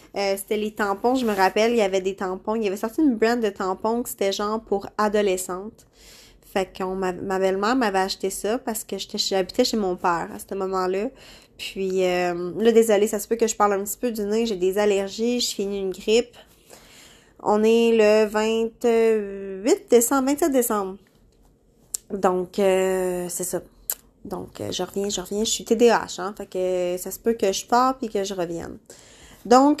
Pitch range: 190-230 Hz